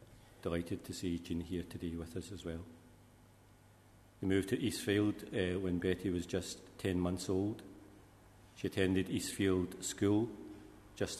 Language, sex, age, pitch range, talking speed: English, male, 50-69, 90-100 Hz, 145 wpm